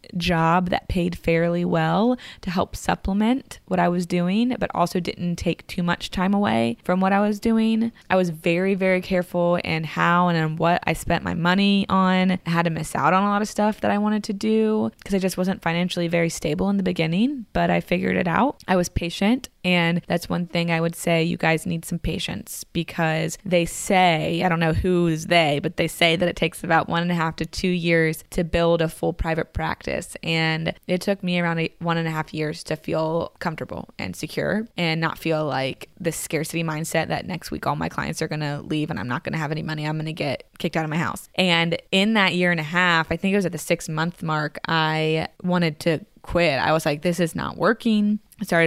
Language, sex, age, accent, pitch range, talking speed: English, female, 20-39, American, 165-190 Hz, 235 wpm